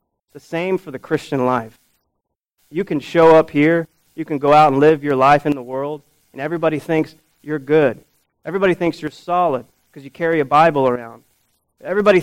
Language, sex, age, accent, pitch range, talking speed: English, male, 30-49, American, 135-170 Hz, 185 wpm